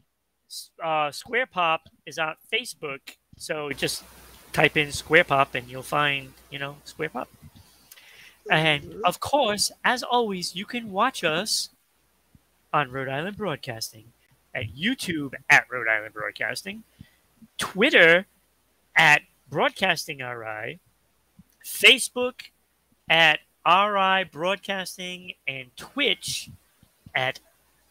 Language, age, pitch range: English, 30-49, 150-205 Hz